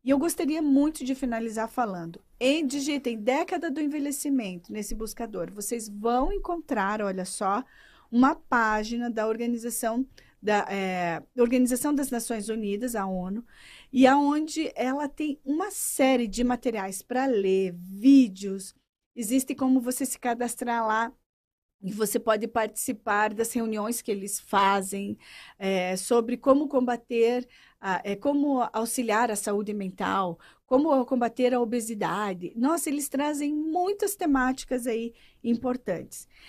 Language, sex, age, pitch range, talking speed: Portuguese, female, 40-59, 210-270 Hz, 130 wpm